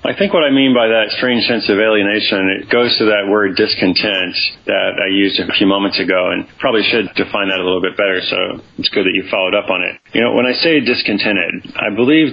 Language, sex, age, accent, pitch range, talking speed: English, male, 30-49, American, 100-115 Hz, 235 wpm